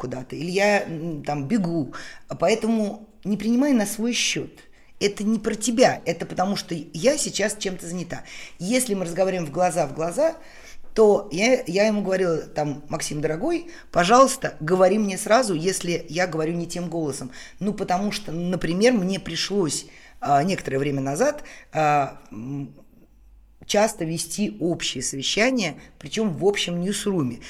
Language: Russian